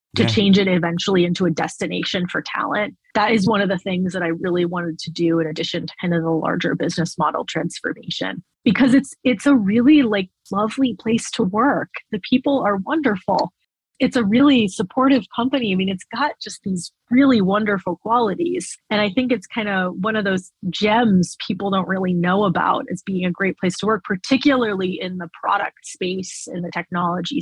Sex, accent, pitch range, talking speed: female, American, 175-220 Hz, 195 wpm